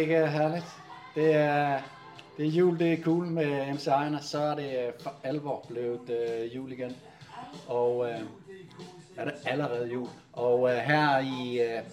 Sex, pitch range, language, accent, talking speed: male, 135-165 Hz, Danish, native, 160 wpm